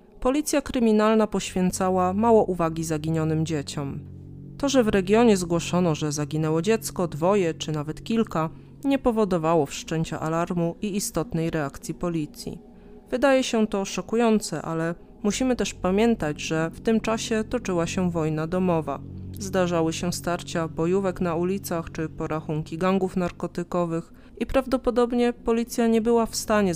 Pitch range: 160-215 Hz